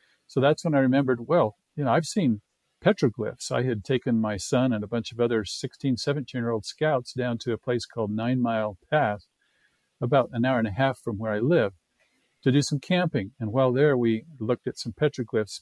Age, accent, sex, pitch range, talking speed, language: 50-69, American, male, 110-140 Hz, 210 wpm, English